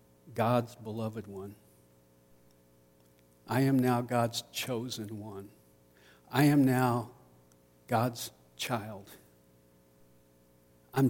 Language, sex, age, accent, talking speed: English, male, 60-79, American, 80 wpm